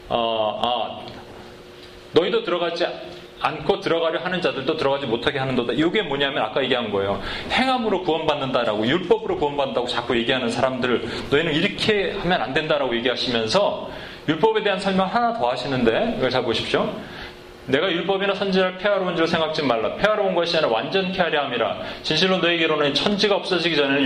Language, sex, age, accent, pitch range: Korean, male, 30-49, native, 145-190 Hz